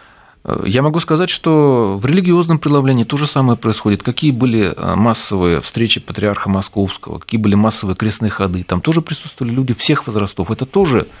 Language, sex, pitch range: Russian, male, 100-140 Hz